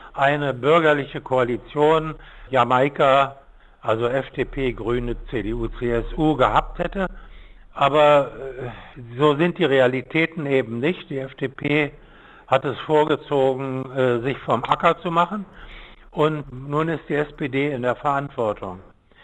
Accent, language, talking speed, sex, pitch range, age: German, German, 110 wpm, male, 135-170 Hz, 60-79